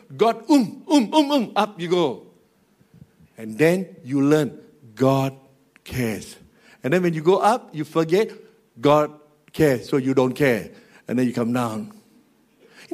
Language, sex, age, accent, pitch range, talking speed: English, male, 60-79, Malaysian, 155-220 Hz, 160 wpm